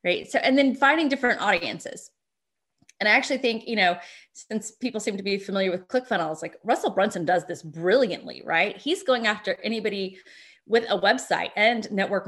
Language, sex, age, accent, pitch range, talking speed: English, female, 20-39, American, 190-250 Hz, 180 wpm